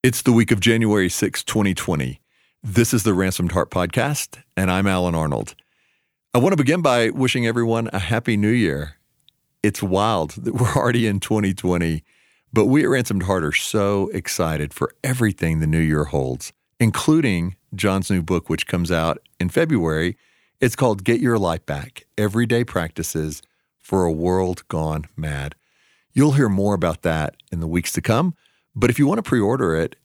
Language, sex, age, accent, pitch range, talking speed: English, male, 50-69, American, 85-110 Hz, 175 wpm